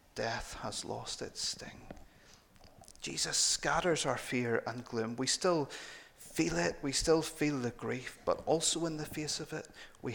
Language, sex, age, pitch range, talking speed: English, male, 30-49, 120-155 Hz, 165 wpm